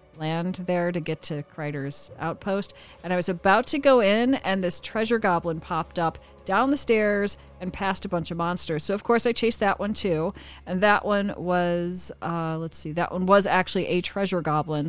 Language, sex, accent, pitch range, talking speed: English, female, American, 165-200 Hz, 205 wpm